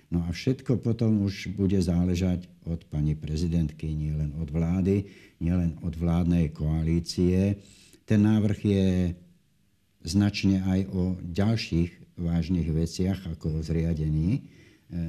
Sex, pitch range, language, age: male, 85-100 Hz, Slovak, 60-79